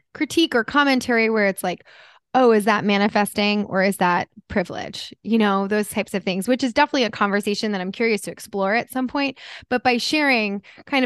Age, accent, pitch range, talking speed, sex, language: 20-39, American, 195-250 Hz, 200 wpm, female, English